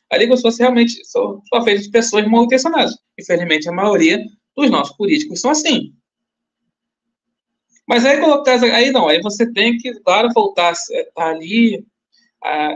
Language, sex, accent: Portuguese, male, Brazilian